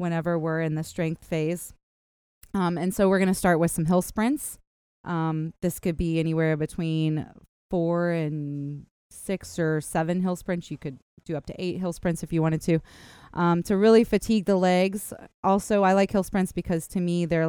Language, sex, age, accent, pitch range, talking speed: English, female, 20-39, American, 155-185 Hz, 195 wpm